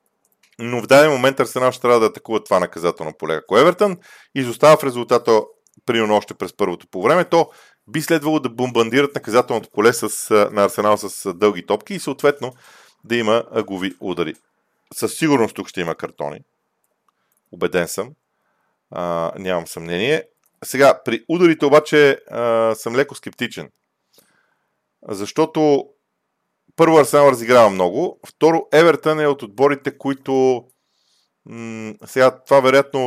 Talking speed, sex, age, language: 135 wpm, male, 40-59, Bulgarian